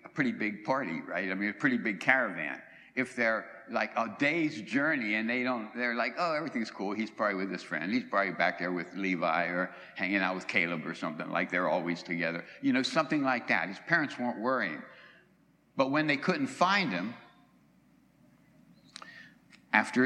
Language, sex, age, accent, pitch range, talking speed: English, male, 60-79, American, 115-190 Hz, 185 wpm